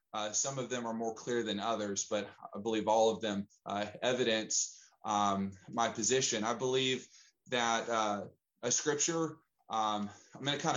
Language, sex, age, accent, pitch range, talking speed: English, male, 20-39, American, 110-140 Hz, 175 wpm